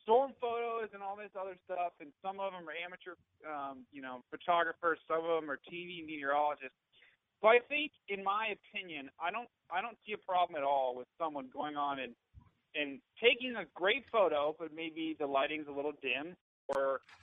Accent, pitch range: American, 145-180 Hz